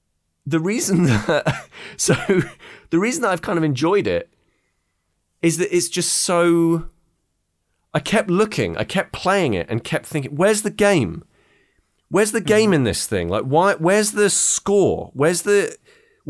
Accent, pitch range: British, 105-170 Hz